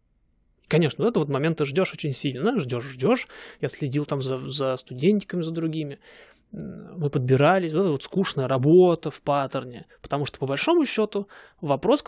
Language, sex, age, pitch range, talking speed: Russian, male, 20-39, 135-180 Hz, 170 wpm